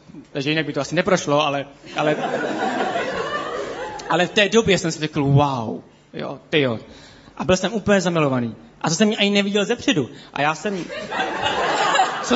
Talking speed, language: 165 wpm, Czech